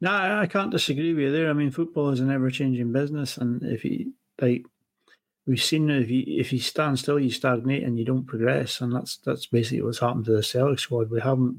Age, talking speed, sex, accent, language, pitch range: 30-49, 240 wpm, male, British, English, 125-145 Hz